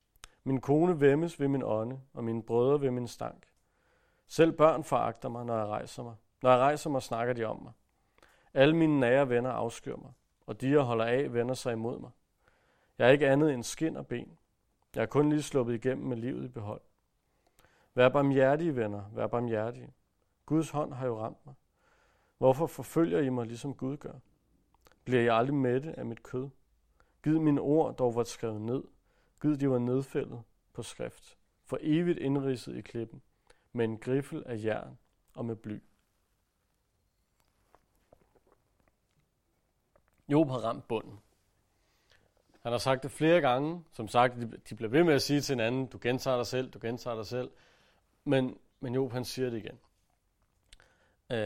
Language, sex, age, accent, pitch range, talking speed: Danish, male, 40-59, native, 110-140 Hz, 175 wpm